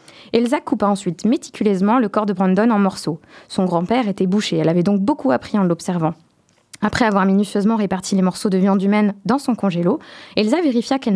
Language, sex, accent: French, female, French